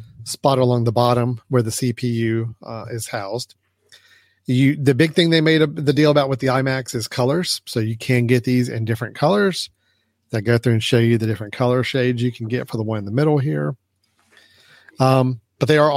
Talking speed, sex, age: 215 wpm, male, 40-59